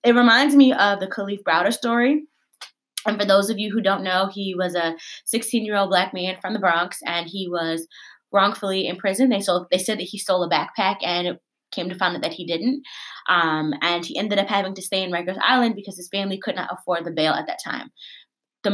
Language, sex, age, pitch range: English, female, 20-39, 180-215 Hz